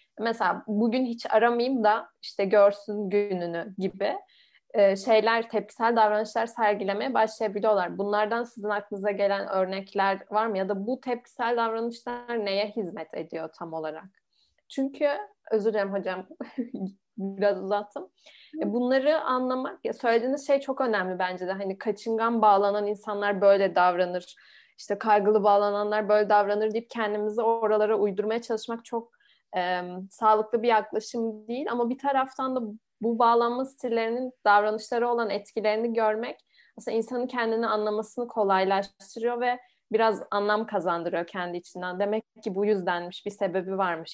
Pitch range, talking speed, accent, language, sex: 195-235 Hz, 130 wpm, native, Turkish, female